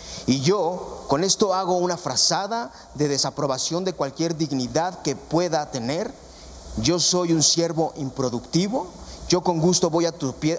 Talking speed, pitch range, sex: 155 wpm, 140-180 Hz, male